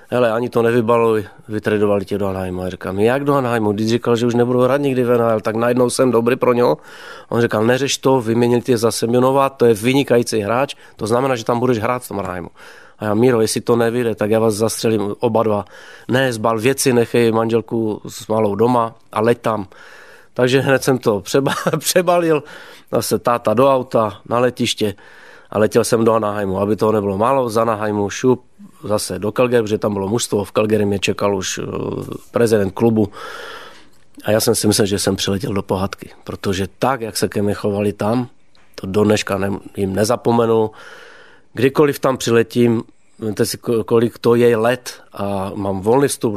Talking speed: 185 wpm